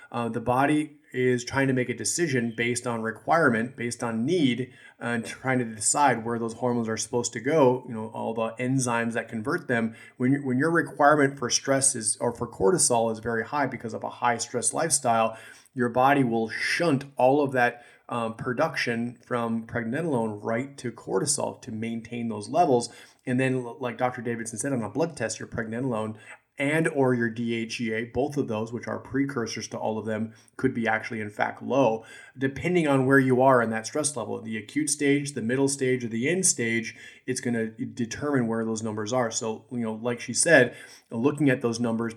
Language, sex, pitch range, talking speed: English, male, 115-135 Hz, 200 wpm